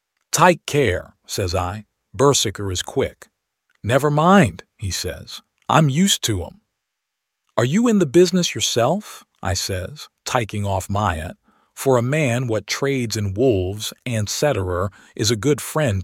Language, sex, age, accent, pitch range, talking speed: English, male, 50-69, American, 105-140 Hz, 150 wpm